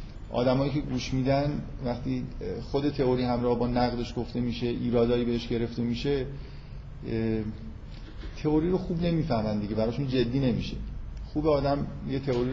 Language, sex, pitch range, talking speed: Persian, male, 110-130 Hz, 135 wpm